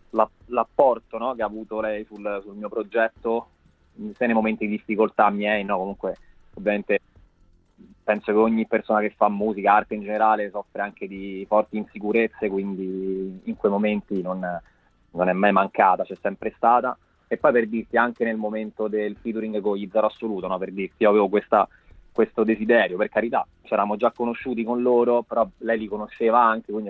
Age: 20-39